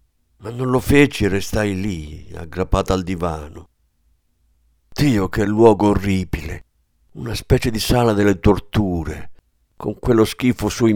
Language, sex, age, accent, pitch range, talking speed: Italian, male, 50-69, native, 80-115 Hz, 130 wpm